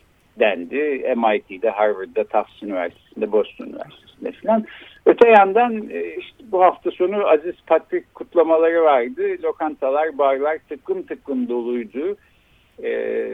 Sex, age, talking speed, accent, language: male, 60-79, 110 wpm, native, Turkish